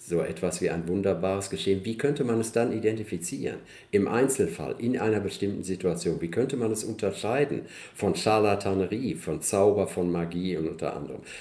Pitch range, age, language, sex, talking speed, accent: 95-115 Hz, 50-69, German, male, 170 wpm, German